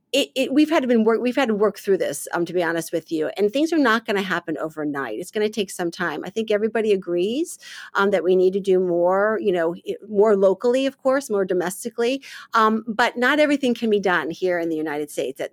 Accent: American